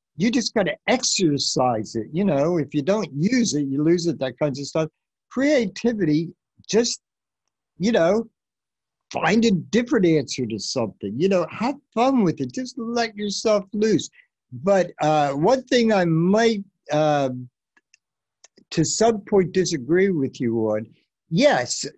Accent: American